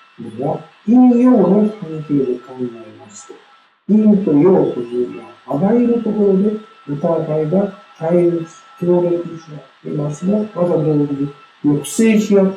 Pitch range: 145-220 Hz